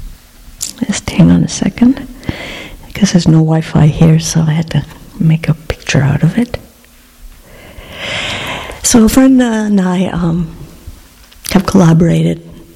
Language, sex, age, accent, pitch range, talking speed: English, female, 60-79, American, 145-165 Hz, 125 wpm